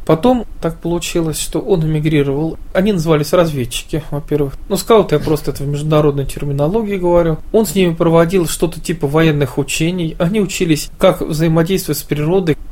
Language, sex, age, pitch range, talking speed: Russian, male, 20-39, 150-180 Hz, 155 wpm